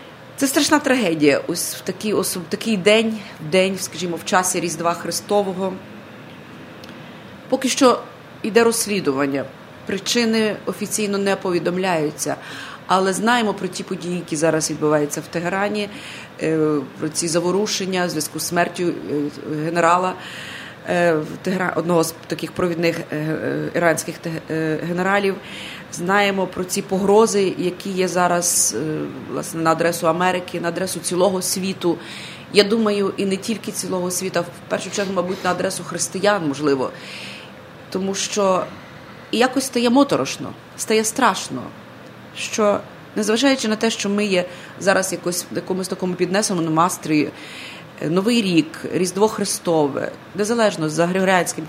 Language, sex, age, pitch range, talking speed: English, female, 30-49, 165-205 Hz, 125 wpm